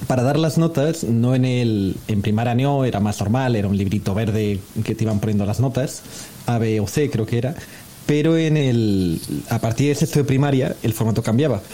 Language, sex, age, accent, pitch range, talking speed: Spanish, male, 30-49, Spanish, 115-150 Hz, 215 wpm